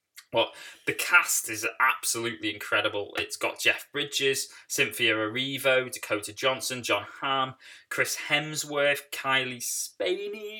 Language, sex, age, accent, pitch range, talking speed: English, male, 20-39, British, 125-180 Hz, 115 wpm